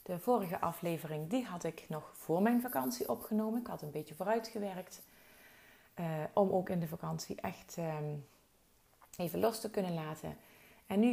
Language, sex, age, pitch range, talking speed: Dutch, female, 30-49, 165-215 Hz, 165 wpm